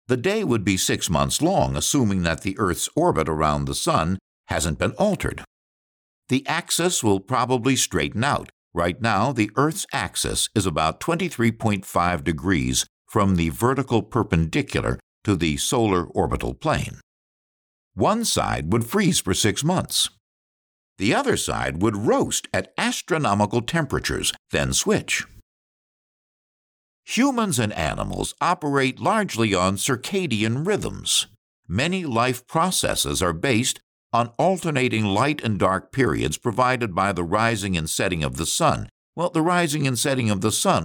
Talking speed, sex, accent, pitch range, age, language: 140 wpm, male, American, 85-140 Hz, 60-79, English